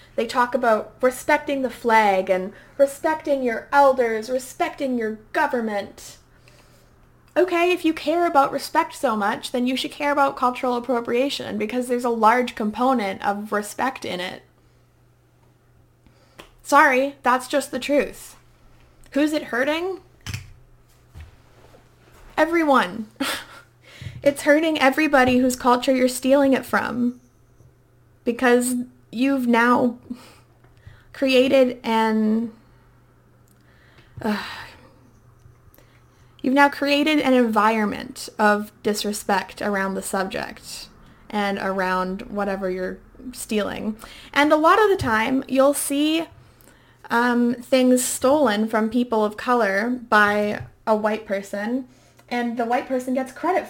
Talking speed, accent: 115 wpm, American